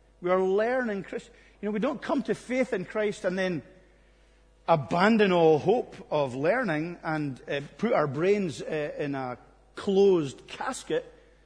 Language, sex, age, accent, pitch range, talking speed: English, male, 50-69, British, 150-215 Hz, 150 wpm